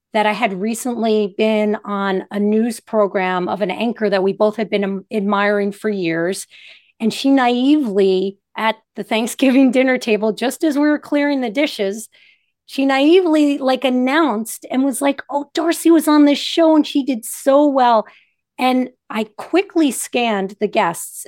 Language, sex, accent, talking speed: English, female, American, 165 wpm